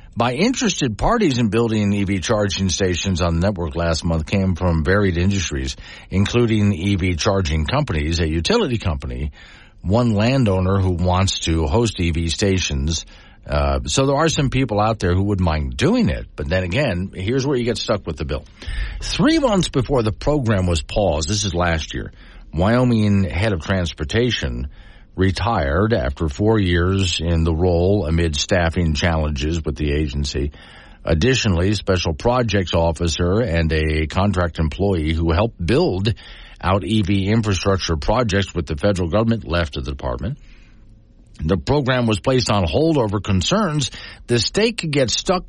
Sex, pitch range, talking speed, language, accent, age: male, 85-115 Hz, 160 wpm, English, American, 50-69